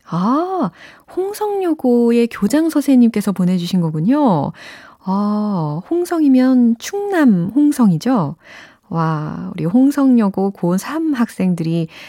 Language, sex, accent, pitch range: Korean, female, native, 165-245 Hz